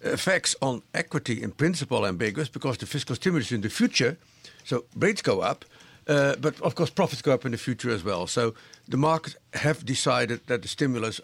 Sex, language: male, English